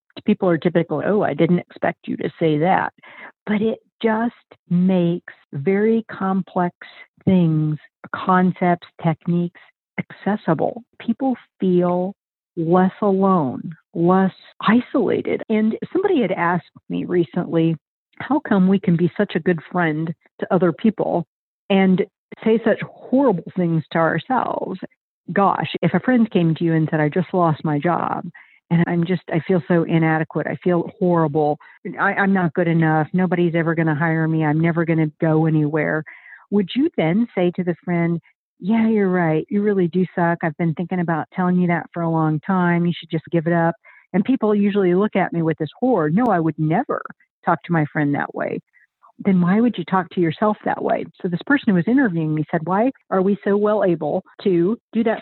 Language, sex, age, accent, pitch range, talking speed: English, female, 50-69, American, 165-200 Hz, 185 wpm